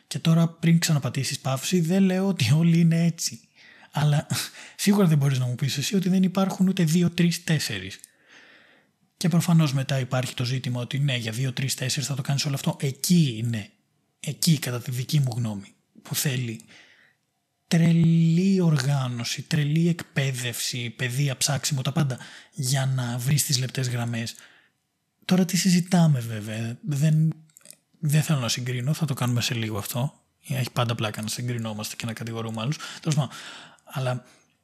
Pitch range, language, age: 120-160 Hz, Greek, 20-39